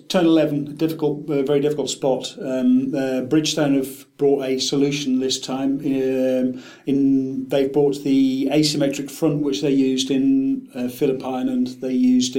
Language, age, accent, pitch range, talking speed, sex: English, 40-59, British, 130-150 Hz, 155 wpm, male